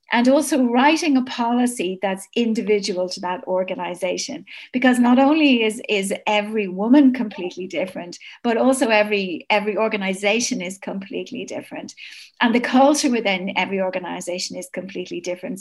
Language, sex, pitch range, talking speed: English, female, 195-245 Hz, 140 wpm